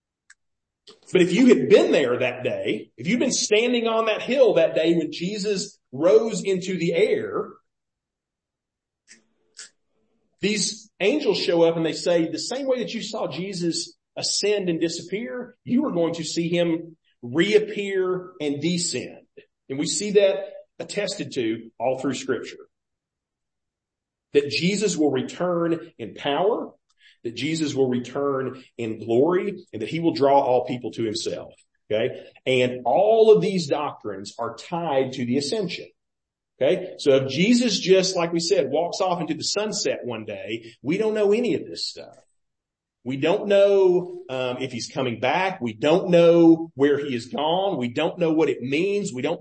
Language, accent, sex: English, American, male